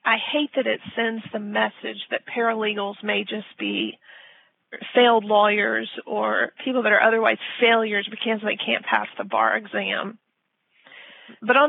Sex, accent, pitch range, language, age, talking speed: female, American, 200-230 Hz, English, 40-59, 150 wpm